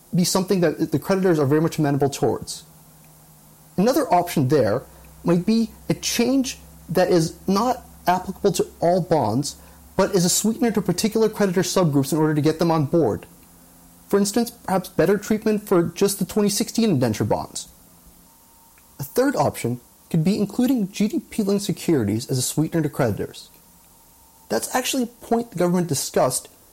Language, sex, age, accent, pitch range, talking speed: English, male, 30-49, American, 150-205 Hz, 155 wpm